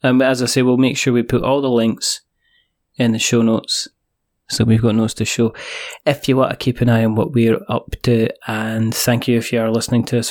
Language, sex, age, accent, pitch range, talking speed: English, male, 20-39, British, 115-130 Hz, 250 wpm